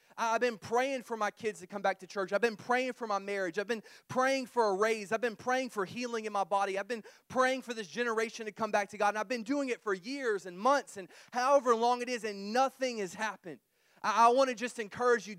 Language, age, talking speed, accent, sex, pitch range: English, 30-49, 255 wpm, American, male, 195-235 Hz